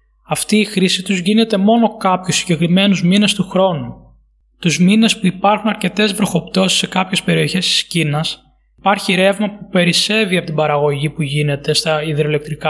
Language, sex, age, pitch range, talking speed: Greek, male, 20-39, 160-200 Hz, 155 wpm